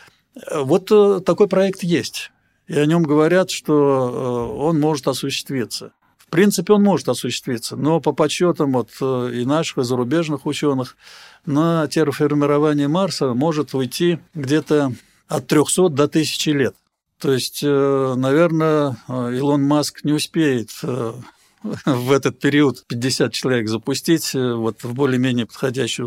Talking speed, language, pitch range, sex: 125 wpm, Russian, 130-155 Hz, male